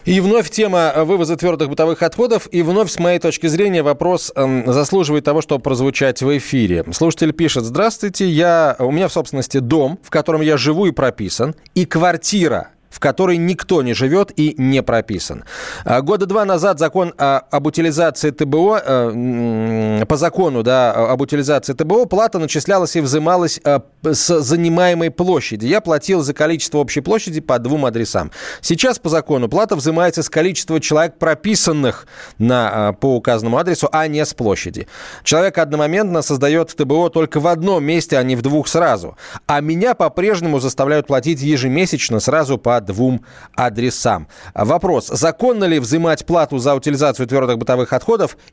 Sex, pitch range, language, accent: male, 135-175 Hz, Russian, native